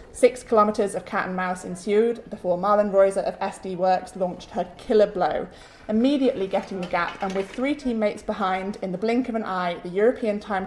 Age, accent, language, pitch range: 20-39, British, English, 195-240 Hz